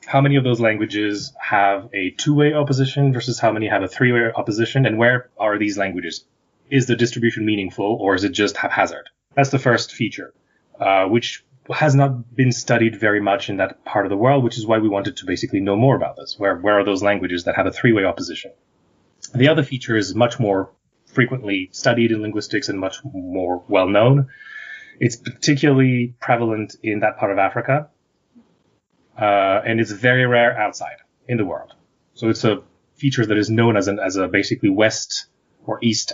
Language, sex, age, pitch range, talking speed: English, male, 20-39, 105-130 Hz, 190 wpm